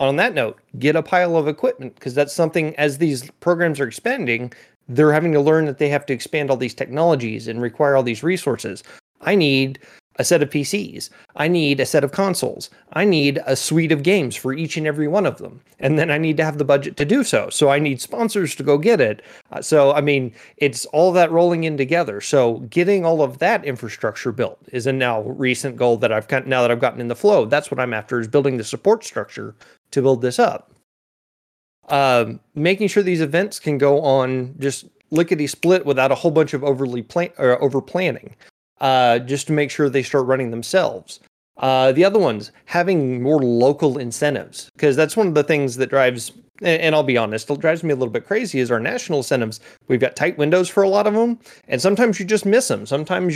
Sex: male